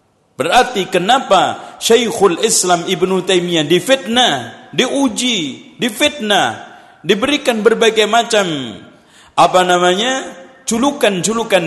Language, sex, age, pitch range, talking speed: Malay, male, 50-69, 160-245 Hz, 75 wpm